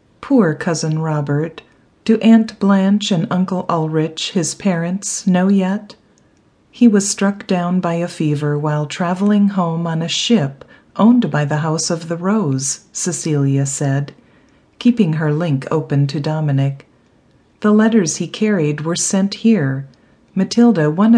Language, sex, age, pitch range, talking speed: English, female, 40-59, 145-205 Hz, 140 wpm